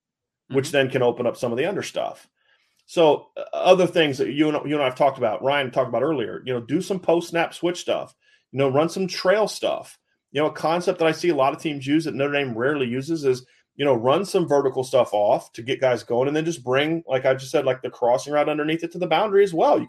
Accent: American